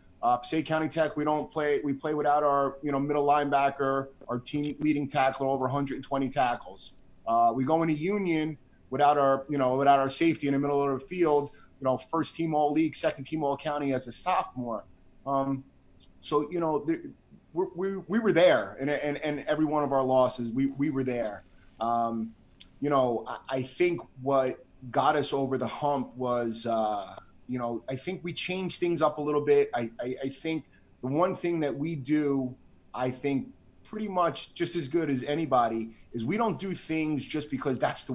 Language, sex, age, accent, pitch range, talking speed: English, male, 20-39, American, 130-155 Hz, 200 wpm